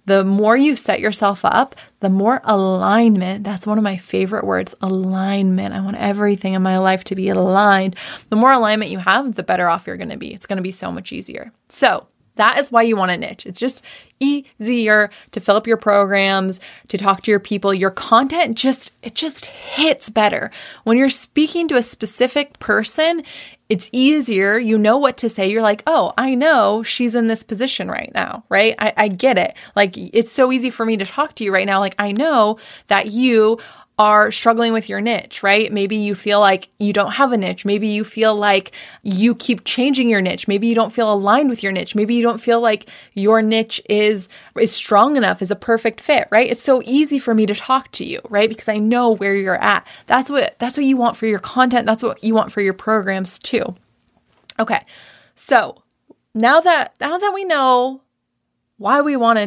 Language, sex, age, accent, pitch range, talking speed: English, female, 20-39, American, 200-250 Hz, 215 wpm